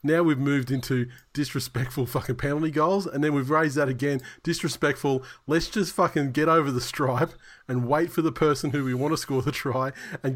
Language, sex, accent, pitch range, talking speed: English, male, Australian, 110-160 Hz, 205 wpm